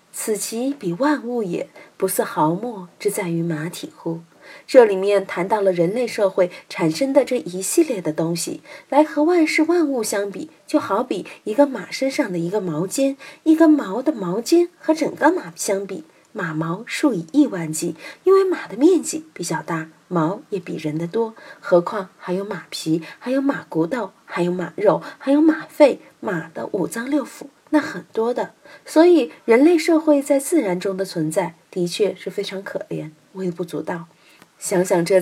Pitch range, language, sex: 180-295 Hz, Chinese, female